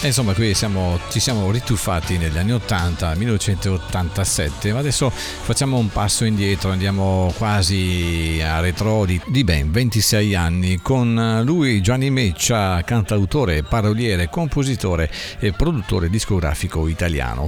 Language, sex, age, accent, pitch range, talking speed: Italian, male, 50-69, native, 85-115 Hz, 120 wpm